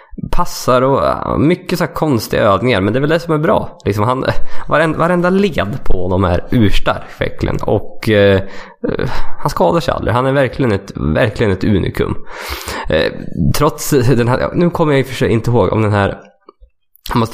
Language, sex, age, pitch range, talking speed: Swedish, male, 20-39, 105-165 Hz, 175 wpm